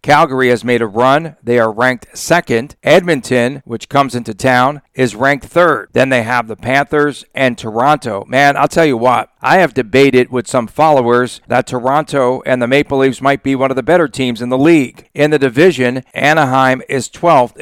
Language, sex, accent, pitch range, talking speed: English, male, American, 120-140 Hz, 195 wpm